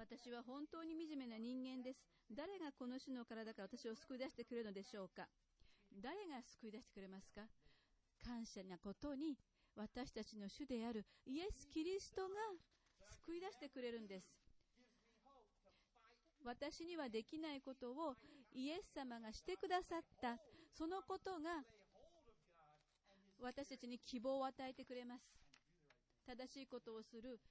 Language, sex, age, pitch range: English, female, 40-59, 210-290 Hz